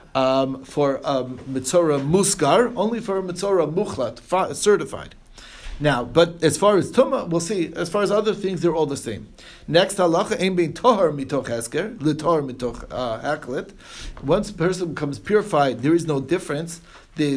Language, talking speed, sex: English, 155 wpm, male